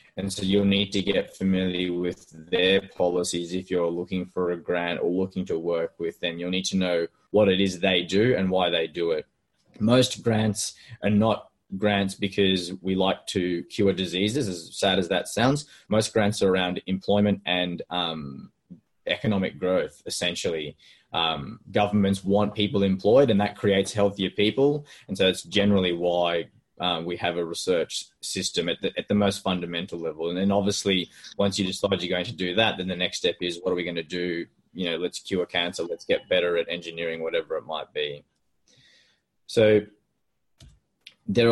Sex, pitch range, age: male, 90-105 Hz, 20-39